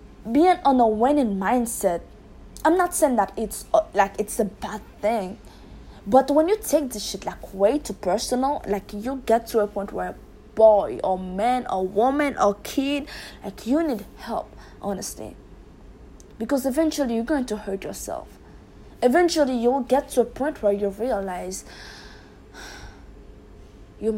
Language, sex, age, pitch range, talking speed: English, female, 20-39, 205-270 Hz, 160 wpm